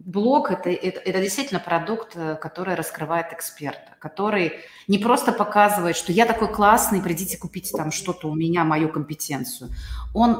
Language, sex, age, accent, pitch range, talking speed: Russian, female, 30-49, native, 155-200 Hz, 155 wpm